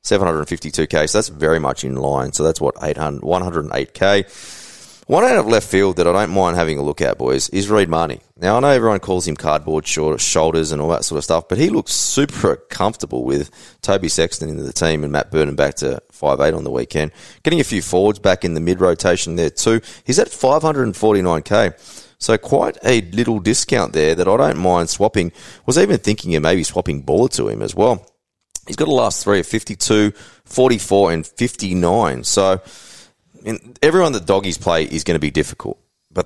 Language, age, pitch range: English, 30-49, 80-100 Hz